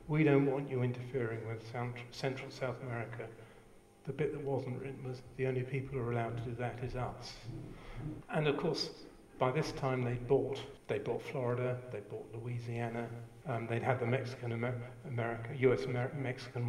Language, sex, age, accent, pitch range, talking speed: English, male, 50-69, British, 120-140 Hz, 175 wpm